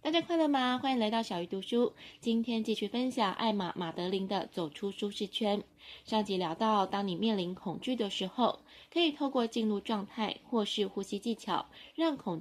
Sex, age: female, 20-39